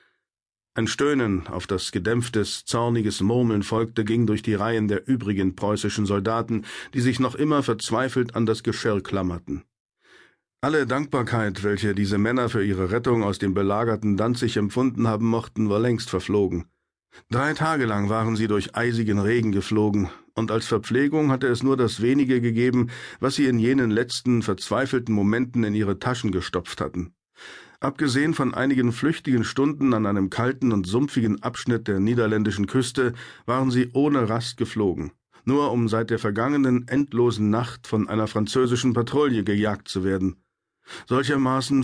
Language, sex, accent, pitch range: German, male, German, 105-125 Hz